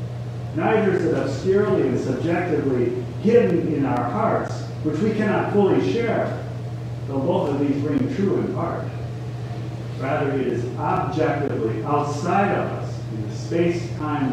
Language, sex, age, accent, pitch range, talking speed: English, male, 50-69, American, 120-145 Hz, 140 wpm